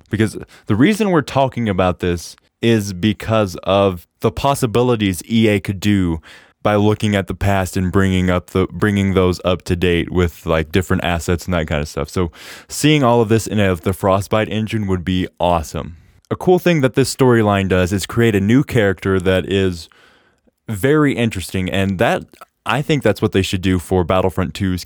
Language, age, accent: English, 20-39, American